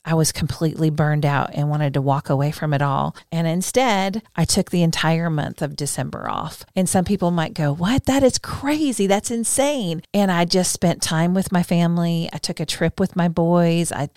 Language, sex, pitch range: English, female, 155-190 Hz